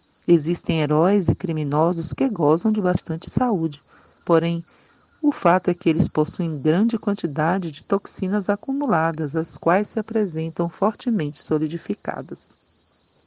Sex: female